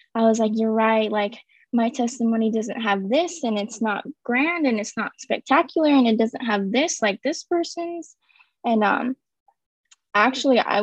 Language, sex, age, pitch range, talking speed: English, female, 10-29, 215-260 Hz, 170 wpm